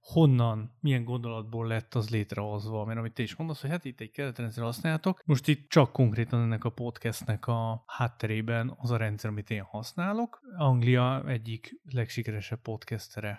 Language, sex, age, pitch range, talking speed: Hungarian, male, 30-49, 115-145 Hz, 160 wpm